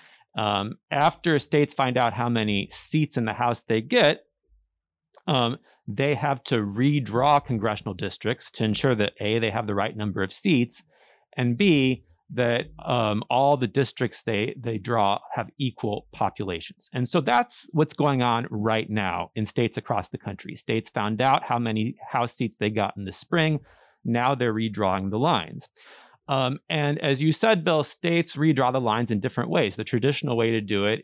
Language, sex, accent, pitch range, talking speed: English, male, American, 105-130 Hz, 180 wpm